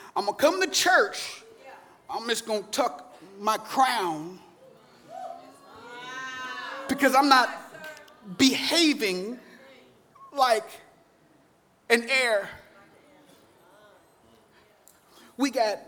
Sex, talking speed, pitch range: male, 75 wpm, 250-335 Hz